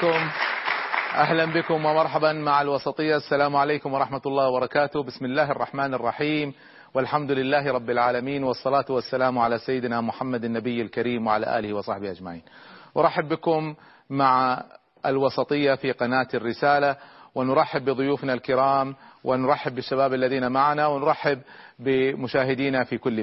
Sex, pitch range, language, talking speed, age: male, 130-155 Hz, Arabic, 120 wpm, 40-59